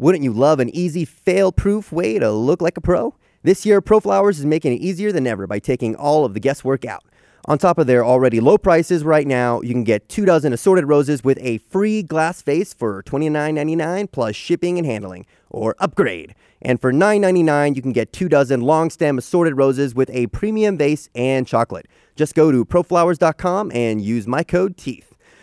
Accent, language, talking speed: American, English, 195 wpm